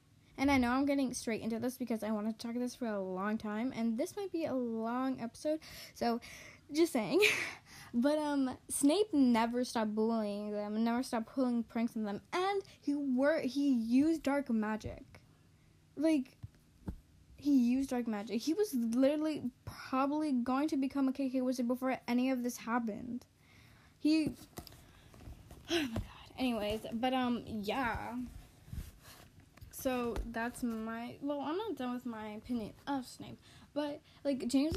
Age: 10-29